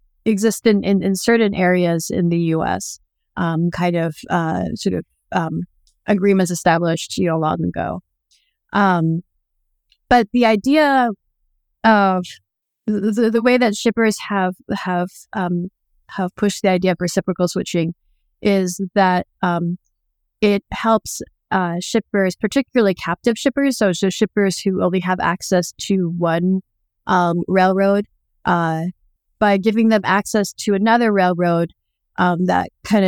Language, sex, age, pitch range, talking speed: English, female, 30-49, 175-205 Hz, 130 wpm